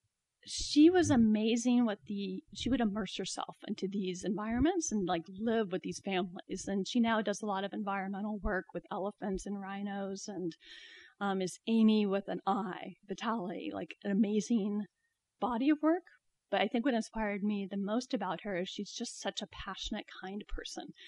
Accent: American